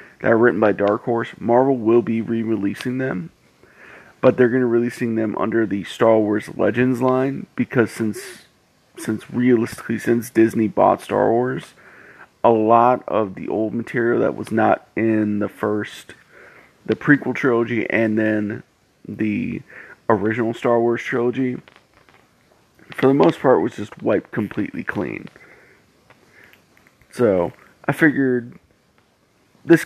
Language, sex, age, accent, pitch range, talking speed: English, male, 30-49, American, 110-130 Hz, 135 wpm